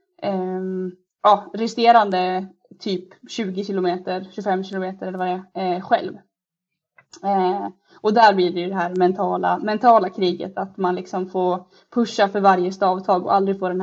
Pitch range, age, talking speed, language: 185-215 Hz, 20-39, 160 wpm, English